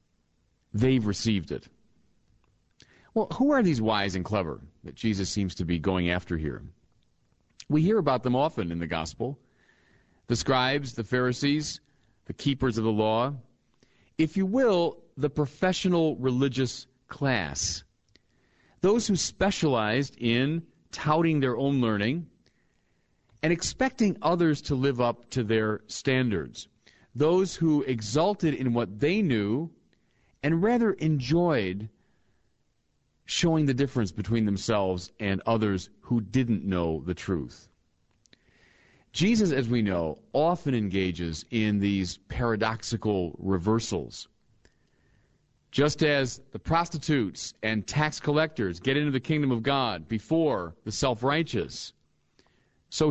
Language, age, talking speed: English, 40-59, 120 wpm